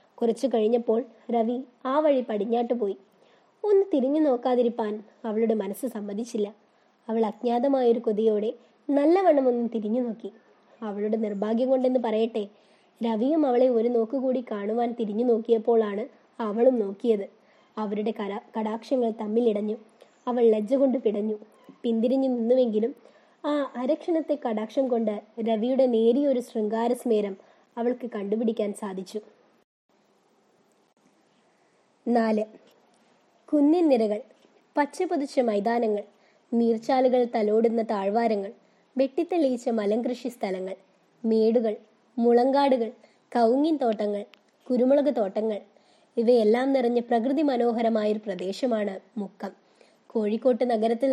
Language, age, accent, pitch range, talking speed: Malayalam, 20-39, native, 215-255 Hz, 90 wpm